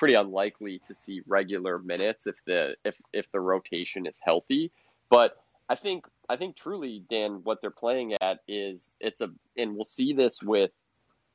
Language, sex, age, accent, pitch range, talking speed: English, male, 20-39, American, 100-125 Hz, 175 wpm